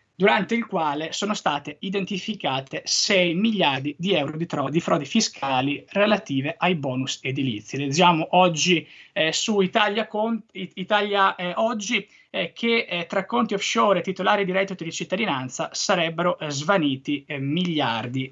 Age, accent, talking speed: 20-39, native, 140 wpm